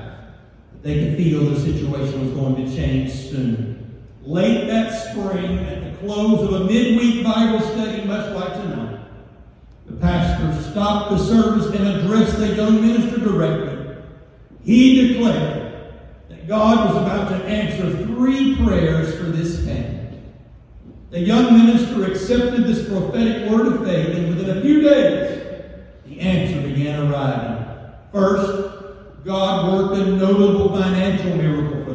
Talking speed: 140 wpm